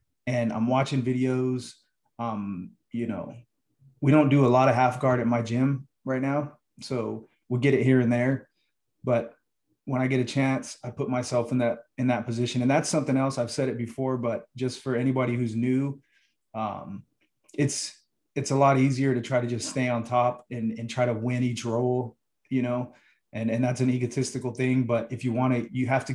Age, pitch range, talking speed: 30-49, 115-130 Hz, 210 wpm